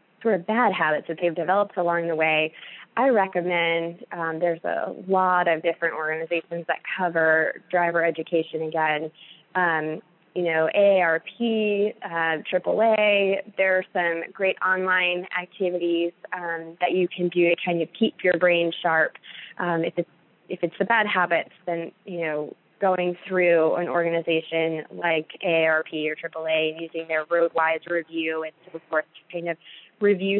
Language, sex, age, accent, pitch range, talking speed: English, female, 20-39, American, 165-195 Hz, 155 wpm